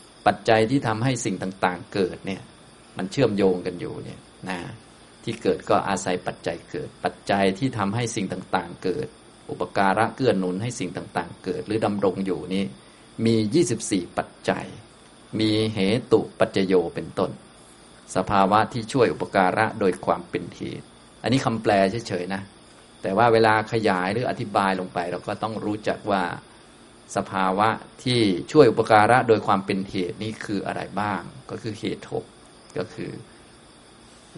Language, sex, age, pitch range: Thai, male, 20-39, 95-110 Hz